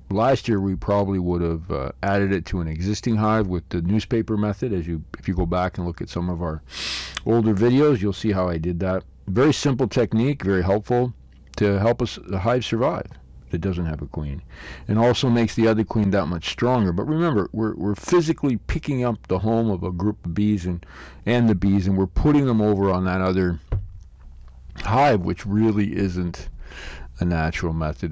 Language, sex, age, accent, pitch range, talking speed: English, male, 50-69, American, 80-105 Hz, 205 wpm